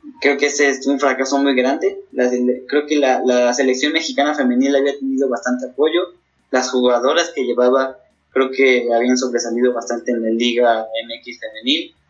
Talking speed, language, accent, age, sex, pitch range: 165 wpm, Spanish, Mexican, 20-39, male, 120-140 Hz